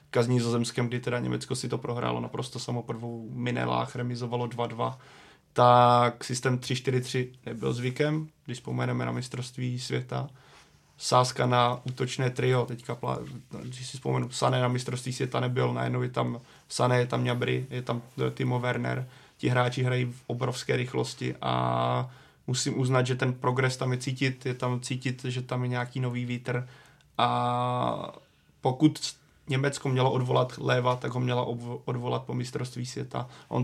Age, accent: 20-39, native